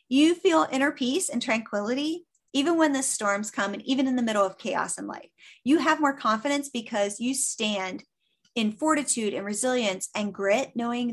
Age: 30-49